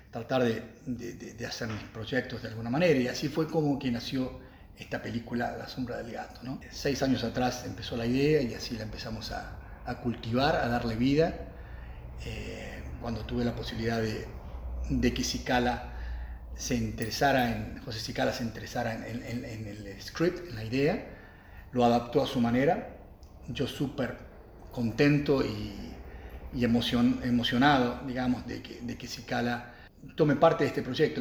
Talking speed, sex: 165 wpm, male